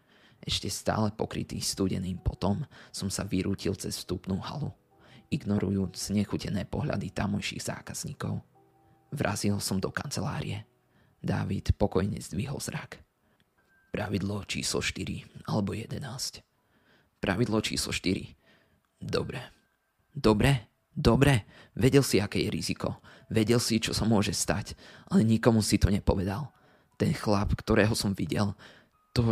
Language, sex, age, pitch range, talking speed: Slovak, male, 20-39, 95-110 Hz, 115 wpm